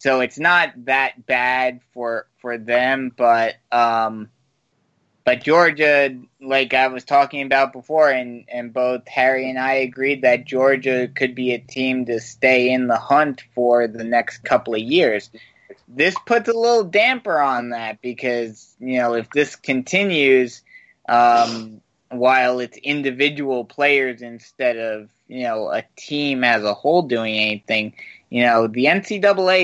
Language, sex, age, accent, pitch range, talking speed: English, male, 20-39, American, 120-140 Hz, 150 wpm